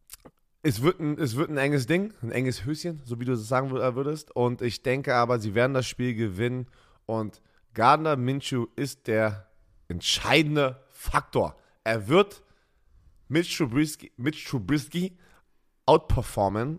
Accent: German